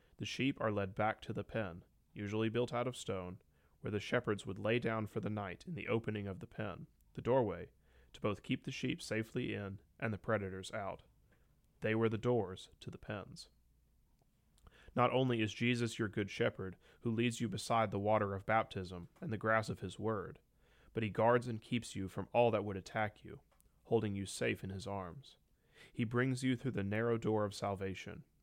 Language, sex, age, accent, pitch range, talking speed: English, male, 30-49, American, 100-115 Hz, 205 wpm